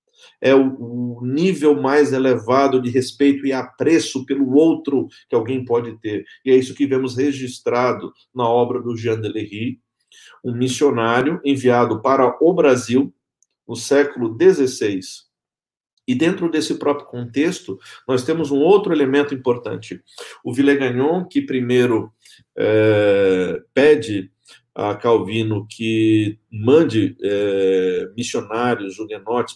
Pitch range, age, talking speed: 120-140 Hz, 50-69, 120 wpm